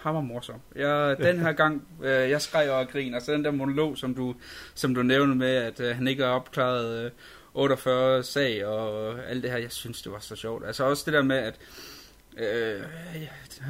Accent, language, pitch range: native, Danish, 125-150 Hz